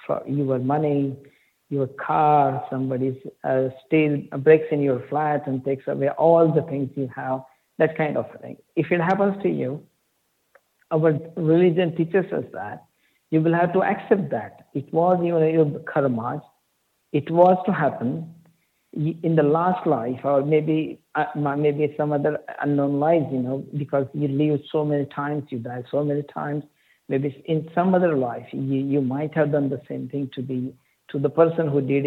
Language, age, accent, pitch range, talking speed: English, 50-69, Indian, 135-160 Hz, 175 wpm